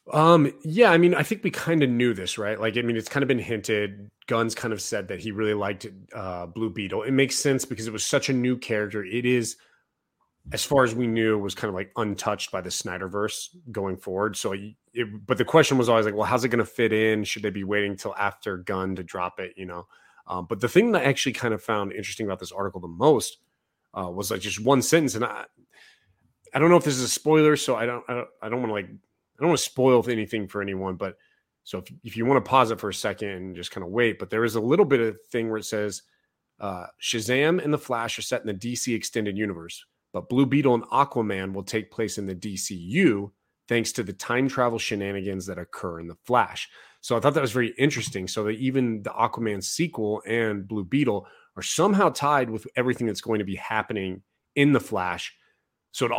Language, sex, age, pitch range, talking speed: English, male, 30-49, 100-125 Hz, 245 wpm